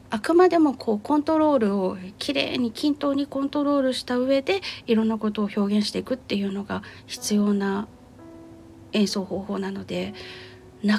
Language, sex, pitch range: Japanese, female, 195-250 Hz